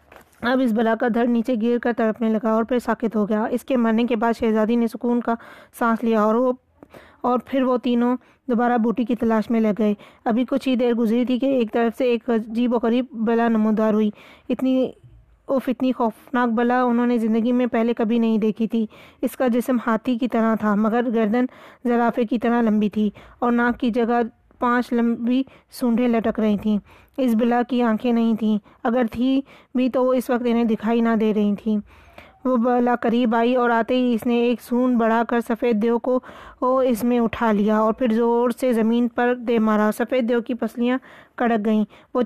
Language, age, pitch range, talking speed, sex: Urdu, 20-39, 225-245 Hz, 210 wpm, female